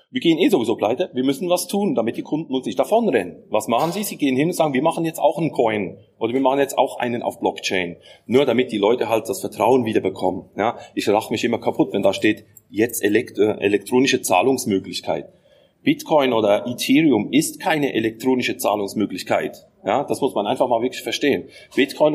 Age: 30-49